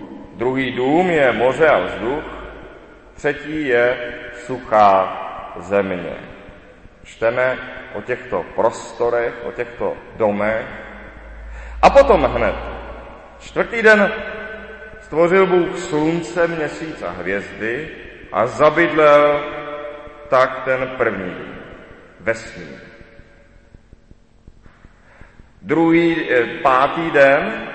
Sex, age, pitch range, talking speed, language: male, 40-59, 115-155 Hz, 80 wpm, Czech